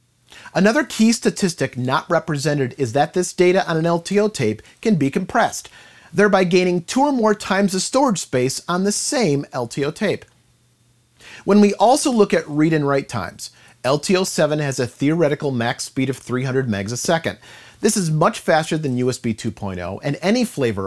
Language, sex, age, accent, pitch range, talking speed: English, male, 40-59, American, 130-185 Hz, 175 wpm